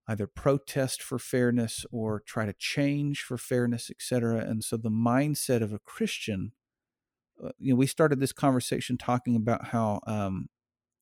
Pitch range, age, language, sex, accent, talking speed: 110-130 Hz, 50-69, English, male, American, 150 wpm